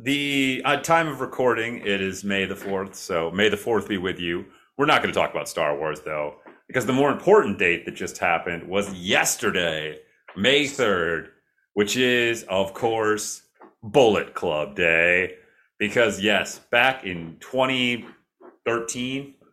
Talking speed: 155 wpm